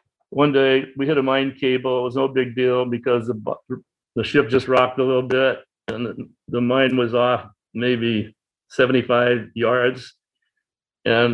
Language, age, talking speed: English, 60-79, 165 wpm